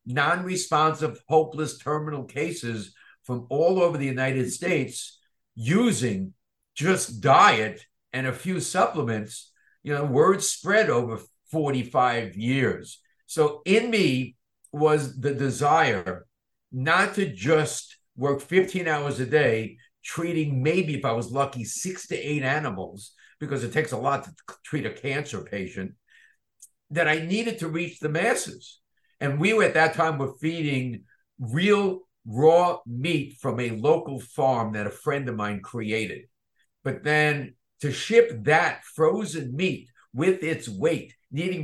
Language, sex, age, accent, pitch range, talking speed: English, male, 60-79, American, 125-165 Hz, 140 wpm